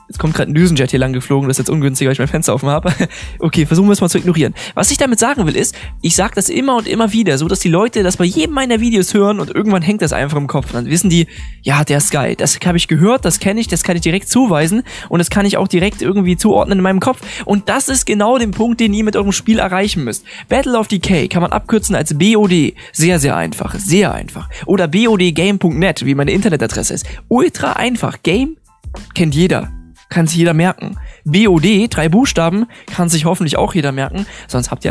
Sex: male